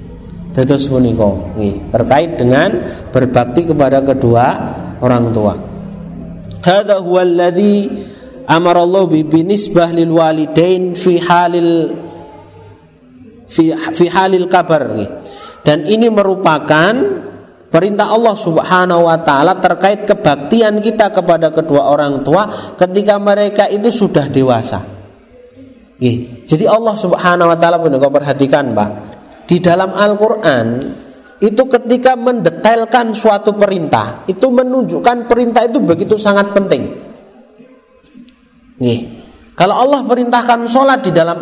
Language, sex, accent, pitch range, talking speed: Indonesian, male, native, 155-210 Hz, 90 wpm